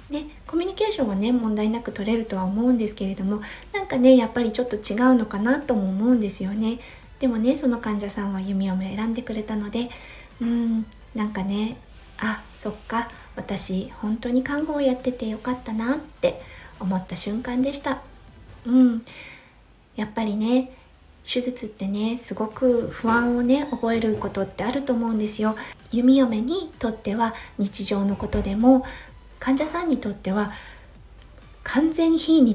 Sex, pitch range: female, 210-255 Hz